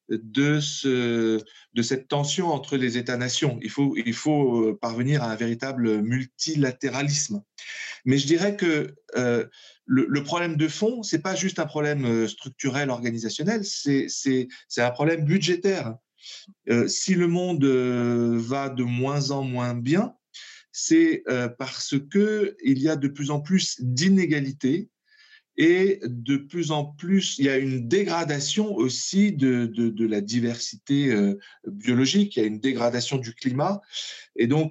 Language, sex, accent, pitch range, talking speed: French, male, French, 125-185 Hz, 155 wpm